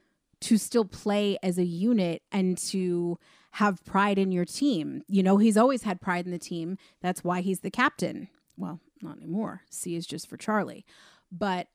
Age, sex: 30-49, female